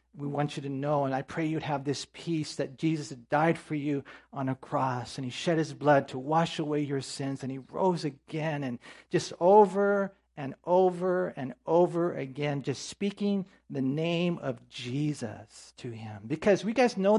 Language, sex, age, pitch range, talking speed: English, male, 50-69, 140-180 Hz, 190 wpm